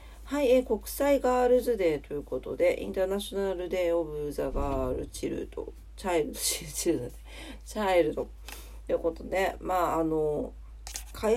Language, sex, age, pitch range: Japanese, female, 40-59, 160-245 Hz